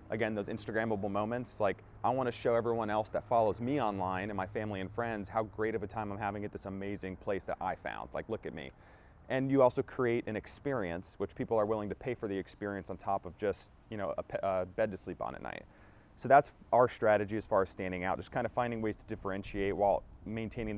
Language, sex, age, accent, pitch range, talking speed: English, male, 30-49, American, 100-120 Hz, 245 wpm